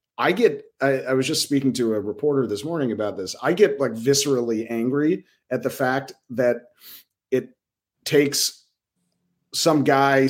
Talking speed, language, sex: 155 wpm, English, male